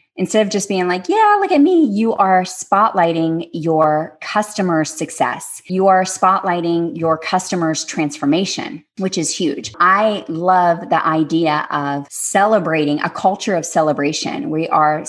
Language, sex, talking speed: English, female, 145 wpm